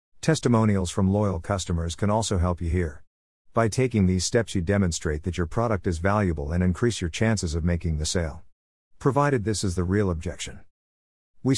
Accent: American